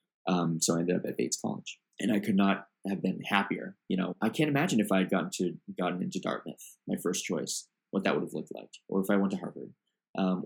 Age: 20-39